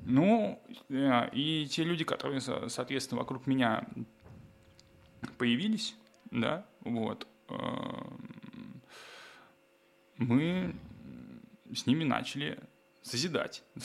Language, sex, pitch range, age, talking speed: Russian, male, 120-170 Hz, 10-29, 70 wpm